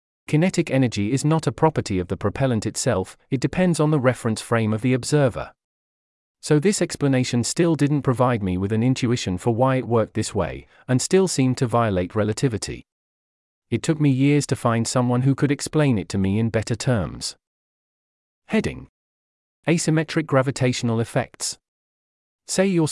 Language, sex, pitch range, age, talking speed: English, male, 105-140 Hz, 30-49, 165 wpm